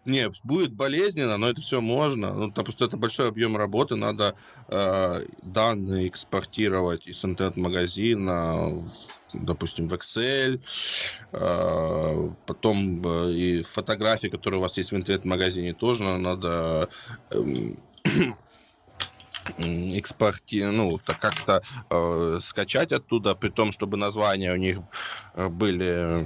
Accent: native